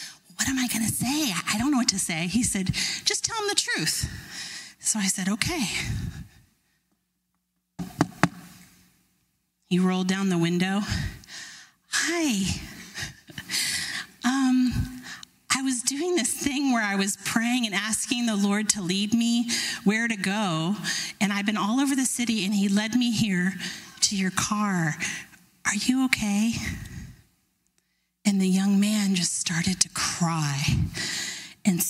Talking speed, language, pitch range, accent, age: 145 wpm, English, 195-265 Hz, American, 30-49